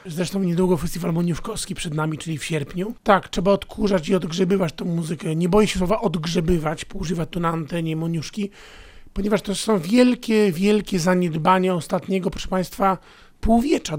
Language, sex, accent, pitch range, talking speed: Polish, male, native, 170-205 Hz, 155 wpm